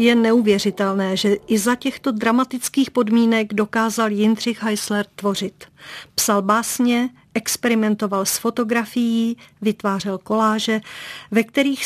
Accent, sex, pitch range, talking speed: native, female, 205-235 Hz, 105 wpm